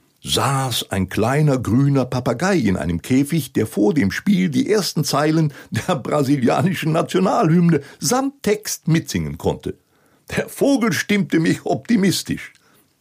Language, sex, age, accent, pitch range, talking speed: German, male, 60-79, German, 120-170 Hz, 125 wpm